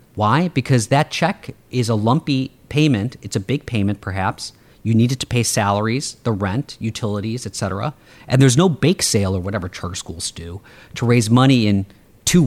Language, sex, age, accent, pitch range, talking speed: English, male, 40-59, American, 105-130 Hz, 190 wpm